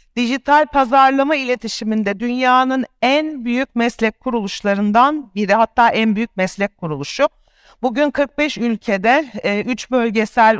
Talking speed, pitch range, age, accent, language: 110 wpm, 200-250 Hz, 60-79, native, Turkish